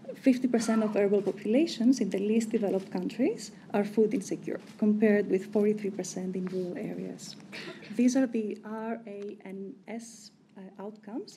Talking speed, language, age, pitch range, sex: 135 wpm, English, 30-49, 195-225 Hz, female